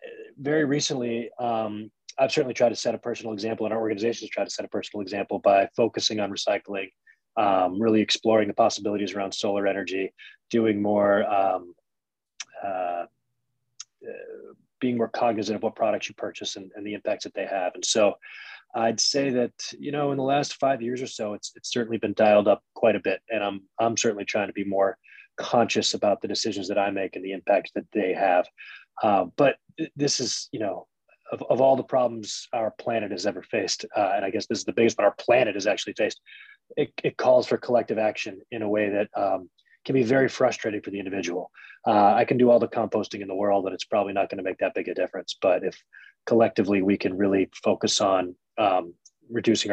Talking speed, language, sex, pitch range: 210 wpm, English, male, 100-125 Hz